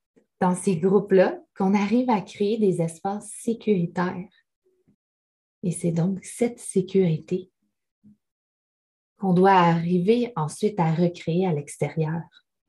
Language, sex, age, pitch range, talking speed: French, female, 20-39, 165-205 Hz, 110 wpm